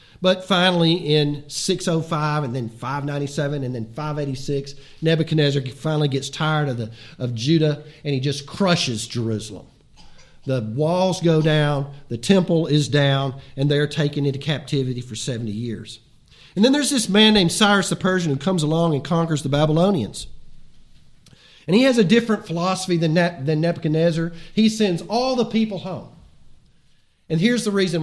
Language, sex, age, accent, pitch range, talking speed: English, male, 40-59, American, 135-190 Hz, 155 wpm